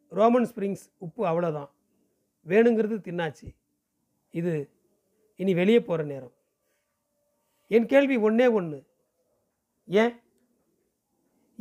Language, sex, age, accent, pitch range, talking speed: Tamil, male, 40-59, native, 170-220 Hz, 90 wpm